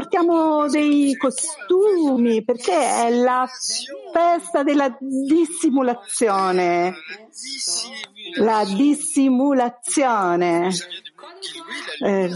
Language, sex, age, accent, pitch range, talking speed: Italian, female, 50-69, native, 205-290 Hz, 60 wpm